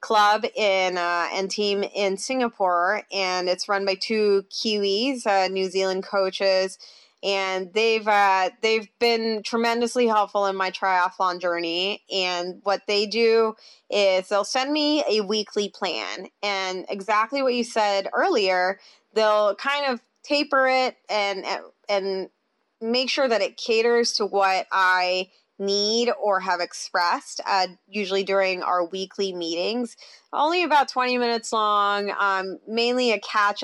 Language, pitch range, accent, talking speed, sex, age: English, 190-220 Hz, American, 140 wpm, female, 20-39